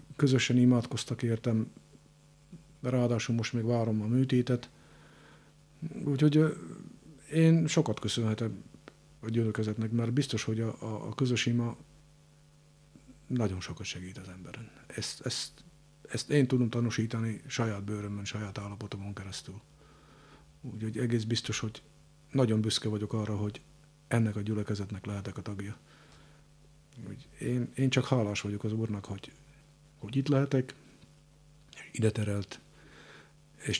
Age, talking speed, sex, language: 50-69, 120 wpm, male, Hungarian